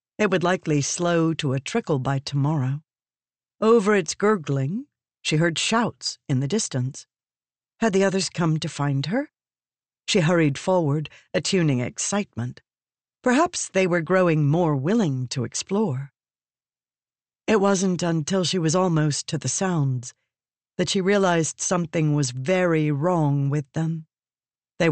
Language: English